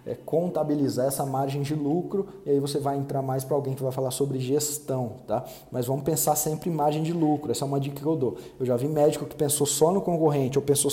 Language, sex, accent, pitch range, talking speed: Portuguese, male, Brazilian, 140-190 Hz, 255 wpm